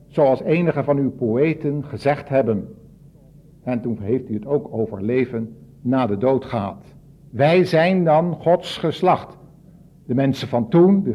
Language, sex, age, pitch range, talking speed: Dutch, male, 60-79, 125-160 Hz, 155 wpm